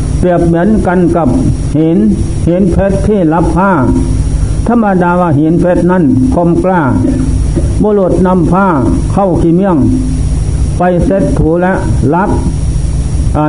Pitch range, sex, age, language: 145-180 Hz, male, 60-79, Thai